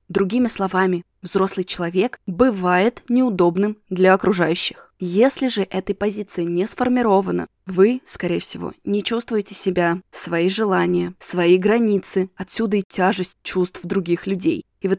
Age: 20-39